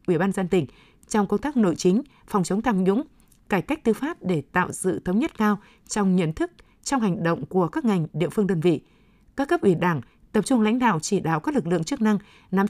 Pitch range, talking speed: 180-225 Hz, 245 wpm